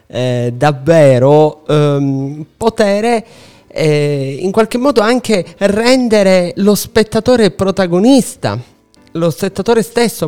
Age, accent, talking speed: 30-49, native, 95 wpm